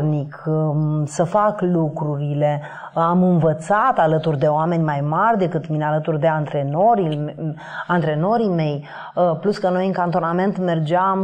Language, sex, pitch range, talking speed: Romanian, female, 160-190 Hz, 125 wpm